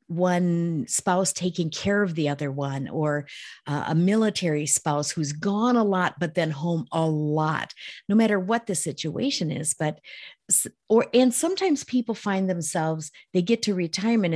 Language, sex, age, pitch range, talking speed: English, female, 50-69, 155-205 Hz, 165 wpm